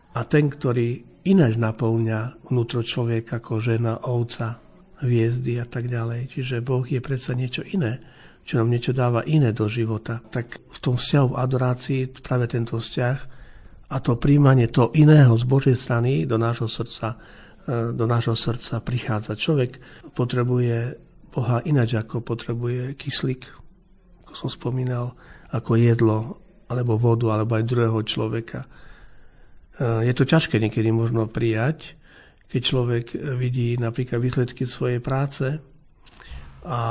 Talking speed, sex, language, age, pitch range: 135 wpm, male, Slovak, 50-69, 115-135 Hz